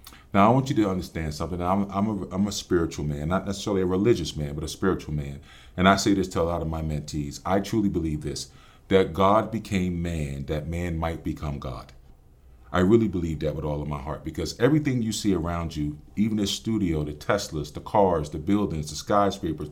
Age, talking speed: 40-59, 215 wpm